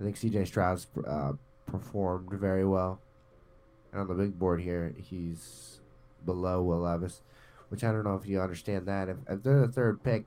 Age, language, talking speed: 20-39, English, 185 wpm